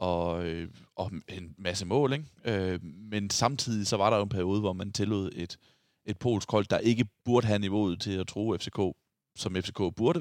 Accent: native